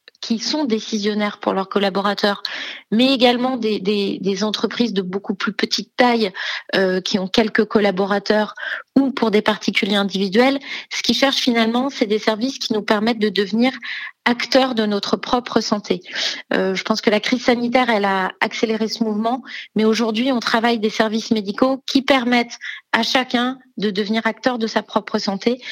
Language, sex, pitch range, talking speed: French, female, 205-245 Hz, 170 wpm